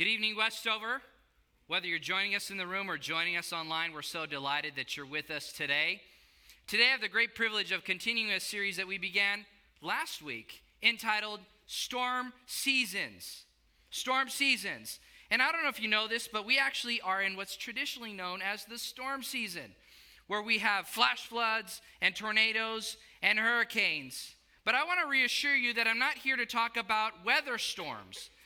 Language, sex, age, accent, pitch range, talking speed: English, male, 20-39, American, 195-235 Hz, 180 wpm